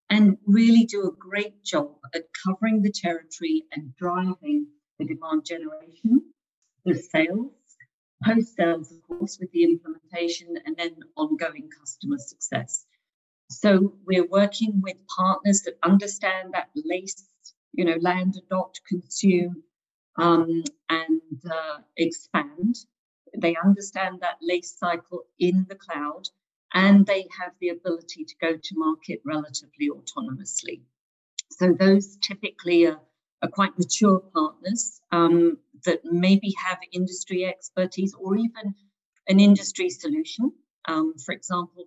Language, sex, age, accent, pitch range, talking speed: English, female, 50-69, British, 170-210 Hz, 125 wpm